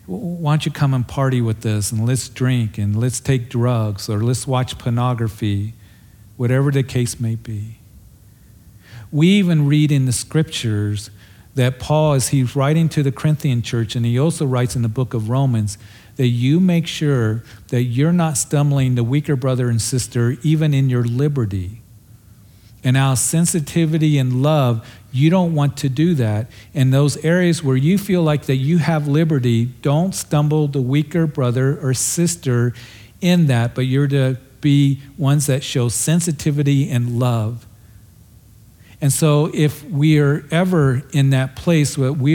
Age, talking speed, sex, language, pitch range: 50-69, 165 wpm, male, English, 115-150 Hz